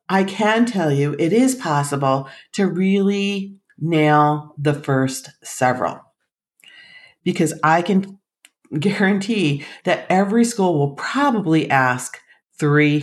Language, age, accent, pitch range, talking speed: English, 40-59, American, 145-200 Hz, 110 wpm